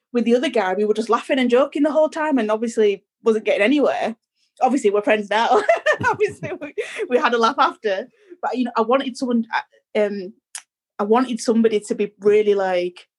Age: 20-39